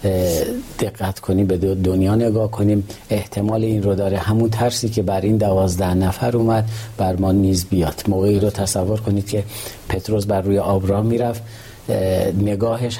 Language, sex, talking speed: Persian, male, 155 wpm